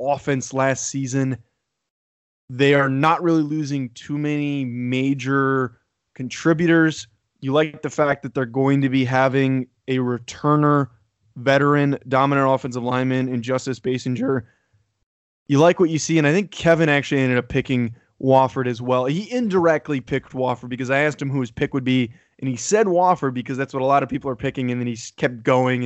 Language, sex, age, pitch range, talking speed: English, male, 20-39, 125-150 Hz, 180 wpm